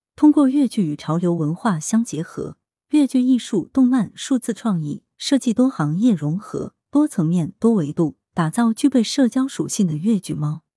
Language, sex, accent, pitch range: Chinese, female, native, 155-225 Hz